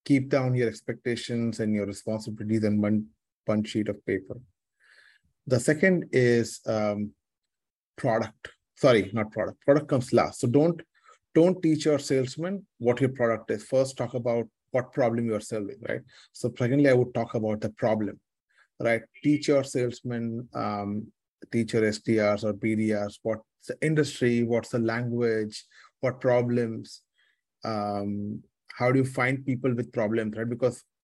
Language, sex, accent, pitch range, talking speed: English, male, Indian, 110-125 Hz, 155 wpm